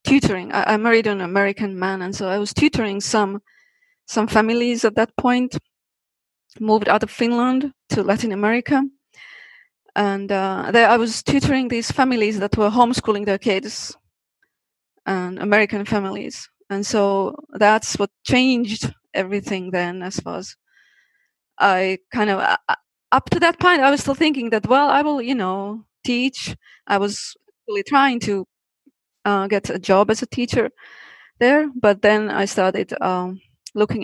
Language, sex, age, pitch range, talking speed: English, female, 20-39, 200-255 Hz, 155 wpm